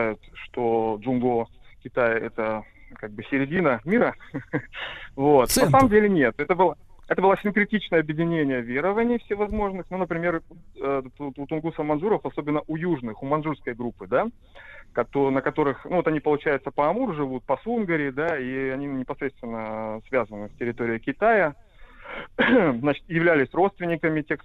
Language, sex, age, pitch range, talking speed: Russian, male, 30-49, 120-160 Hz, 120 wpm